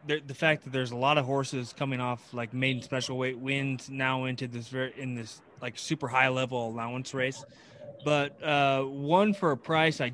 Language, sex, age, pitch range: English, male, 20-39, 130-155 Hz